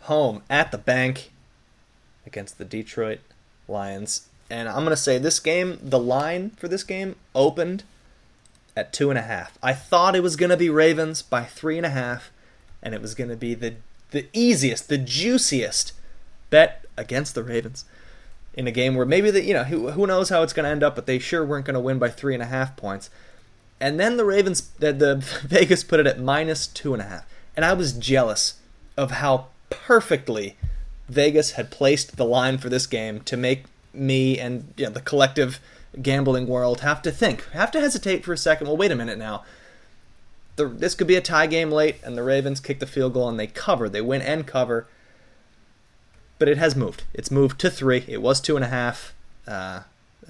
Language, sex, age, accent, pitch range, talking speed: English, male, 20-39, American, 120-155 Hz, 205 wpm